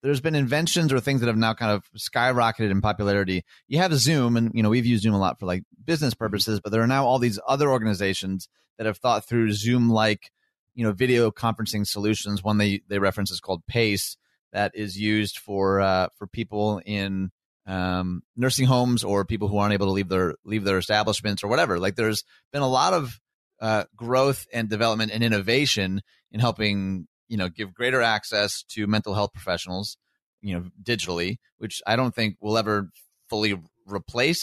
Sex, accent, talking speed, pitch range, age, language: male, American, 195 wpm, 100-120 Hz, 30-49, English